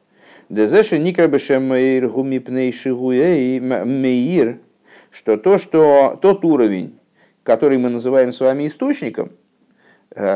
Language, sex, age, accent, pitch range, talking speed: Russian, male, 50-69, native, 120-150 Hz, 70 wpm